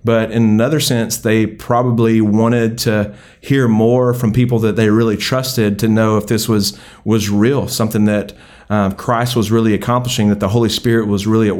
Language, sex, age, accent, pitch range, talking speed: English, male, 30-49, American, 110-125 Hz, 190 wpm